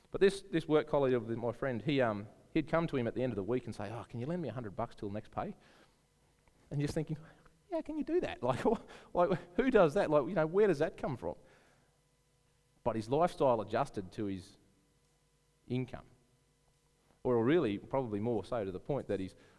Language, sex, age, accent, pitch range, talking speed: English, male, 30-49, Australian, 100-135 Hz, 220 wpm